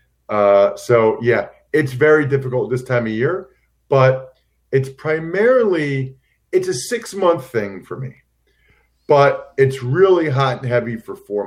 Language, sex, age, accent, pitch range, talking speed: English, male, 40-59, American, 105-140 Hz, 145 wpm